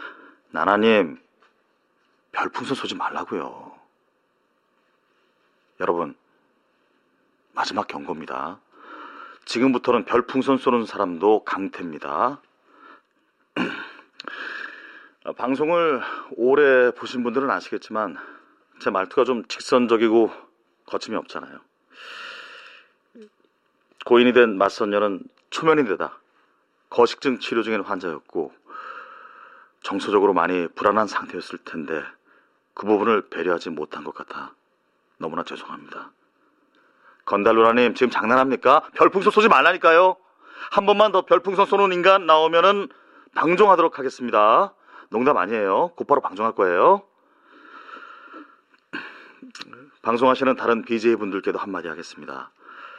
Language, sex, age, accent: Korean, male, 40-59, native